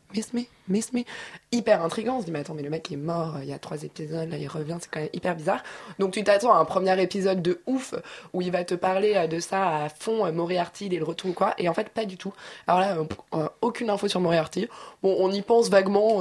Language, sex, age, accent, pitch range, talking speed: French, female, 20-39, French, 160-210 Hz, 255 wpm